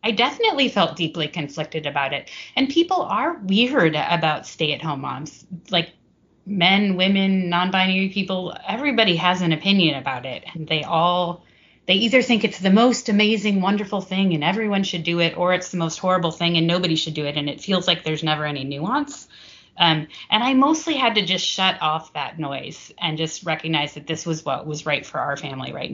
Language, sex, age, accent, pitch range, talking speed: English, female, 30-49, American, 155-195 Hz, 195 wpm